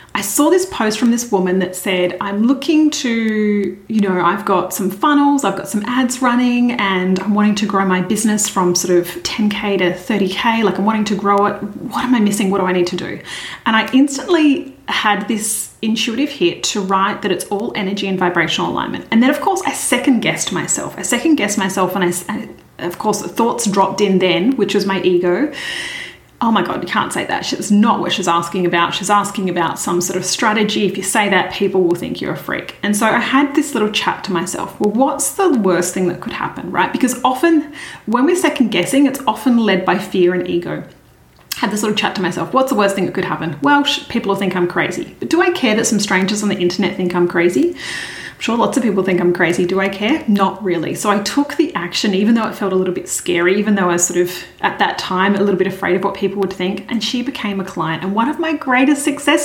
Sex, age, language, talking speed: female, 30-49, English, 245 wpm